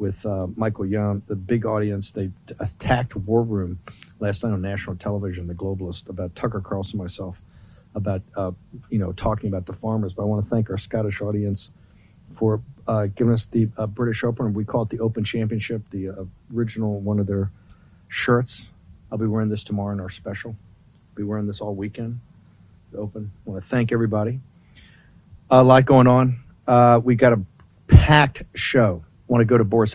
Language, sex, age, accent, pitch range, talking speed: English, male, 50-69, American, 100-130 Hz, 185 wpm